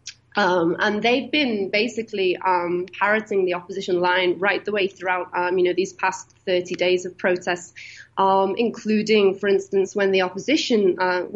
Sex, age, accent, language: female, 30-49, British, English